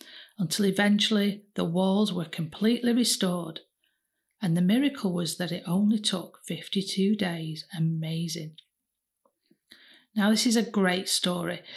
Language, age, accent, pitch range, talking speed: English, 40-59, British, 170-215 Hz, 120 wpm